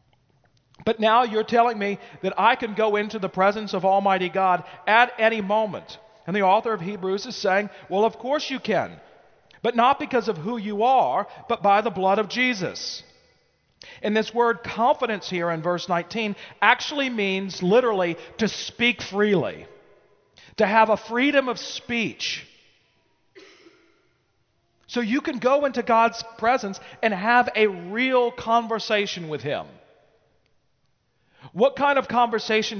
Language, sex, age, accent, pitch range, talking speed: English, male, 40-59, American, 175-230 Hz, 150 wpm